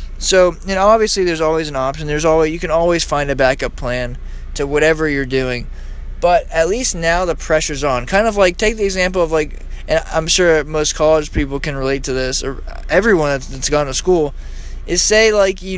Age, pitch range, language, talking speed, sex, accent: 20-39, 145-190 Hz, English, 215 wpm, male, American